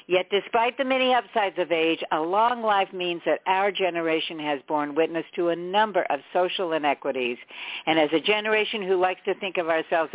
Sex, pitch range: female, 160-215 Hz